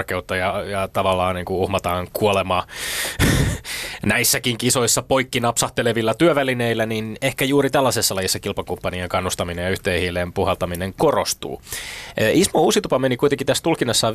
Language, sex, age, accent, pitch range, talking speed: Finnish, male, 20-39, native, 95-115 Hz, 120 wpm